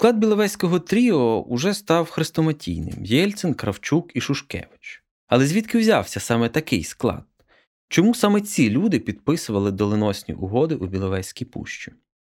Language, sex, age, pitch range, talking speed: Ukrainian, male, 20-39, 110-170 Hz, 130 wpm